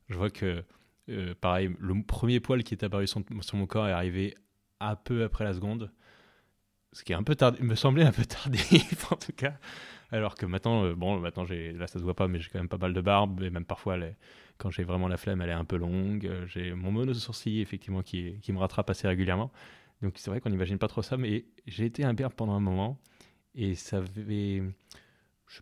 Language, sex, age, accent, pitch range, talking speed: French, male, 20-39, French, 95-115 Hz, 235 wpm